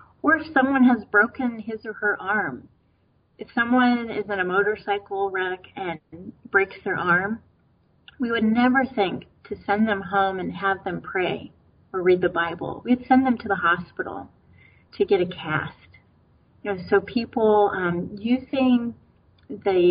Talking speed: 160 wpm